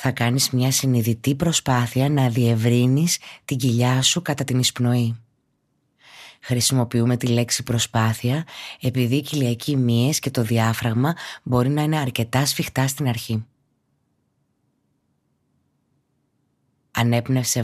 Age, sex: 20-39, female